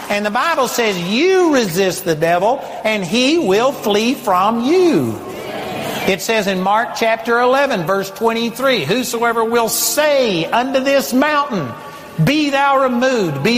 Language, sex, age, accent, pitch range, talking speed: English, male, 60-79, American, 205-260 Hz, 140 wpm